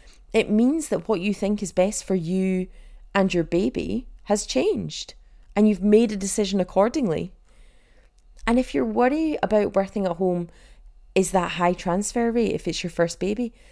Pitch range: 165-210 Hz